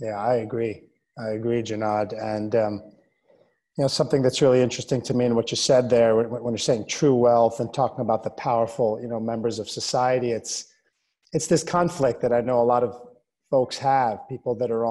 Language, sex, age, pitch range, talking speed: English, male, 30-49, 115-140 Hz, 210 wpm